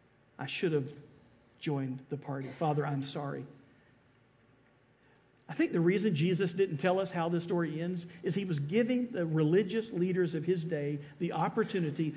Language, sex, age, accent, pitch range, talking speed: English, male, 50-69, American, 150-210 Hz, 165 wpm